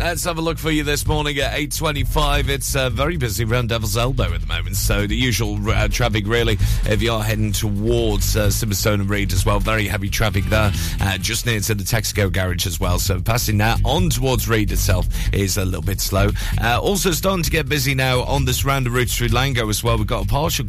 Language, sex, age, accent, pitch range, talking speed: English, male, 40-59, British, 100-120 Hz, 240 wpm